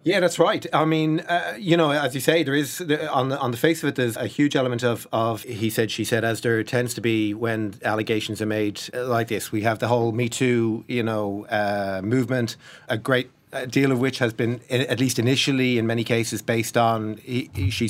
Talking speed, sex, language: 220 wpm, male, English